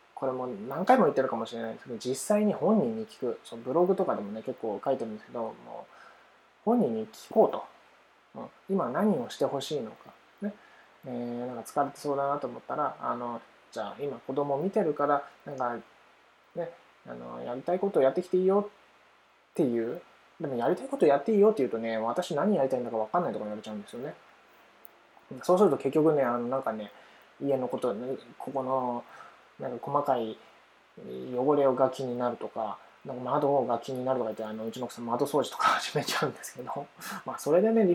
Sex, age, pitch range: male, 20-39, 120-185 Hz